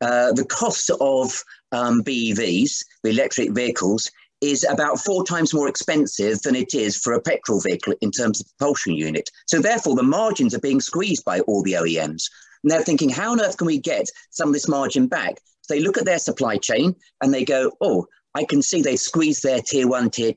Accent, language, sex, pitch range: British, English, male, 120-175 Hz